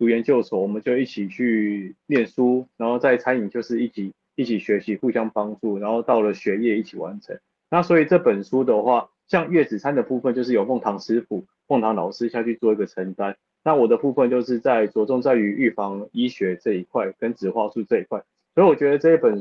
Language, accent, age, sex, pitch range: Chinese, native, 20-39, male, 105-130 Hz